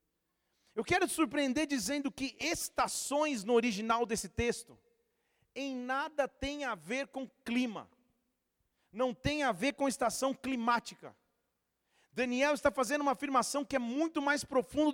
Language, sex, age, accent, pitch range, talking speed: Portuguese, male, 40-59, Brazilian, 230-275 Hz, 140 wpm